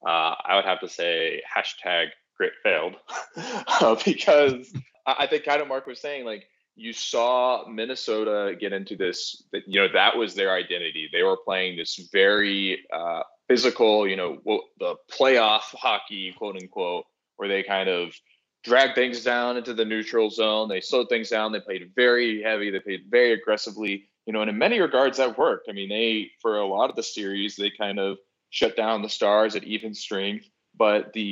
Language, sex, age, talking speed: English, male, 20-39, 190 wpm